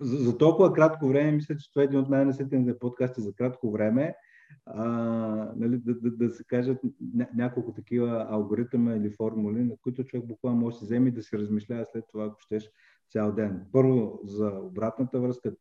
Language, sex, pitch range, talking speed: Bulgarian, male, 105-125 Hz, 195 wpm